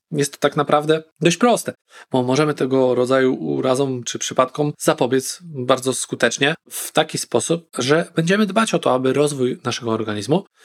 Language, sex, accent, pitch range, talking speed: Polish, male, native, 130-170 Hz, 160 wpm